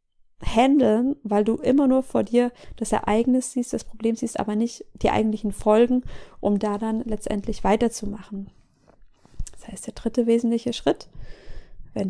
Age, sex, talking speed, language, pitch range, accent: 20-39, female, 150 wpm, German, 205-245 Hz, German